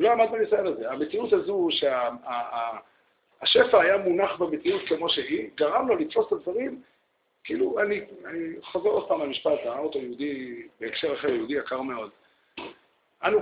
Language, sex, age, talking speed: Hebrew, male, 50-69, 150 wpm